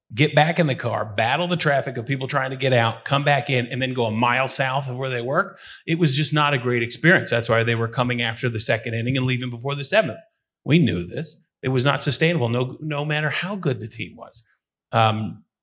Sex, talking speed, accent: male, 245 wpm, American